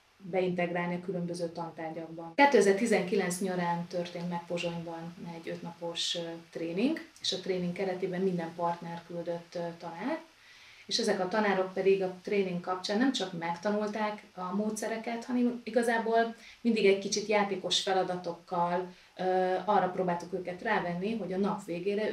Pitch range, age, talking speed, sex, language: 170-205 Hz, 30-49, 130 wpm, female, Hungarian